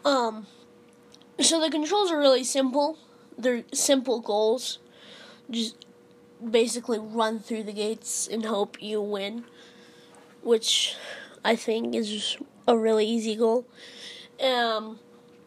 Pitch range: 230-270 Hz